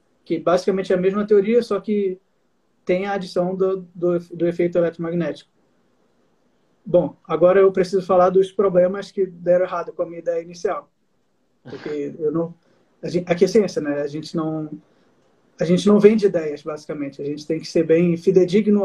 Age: 20-39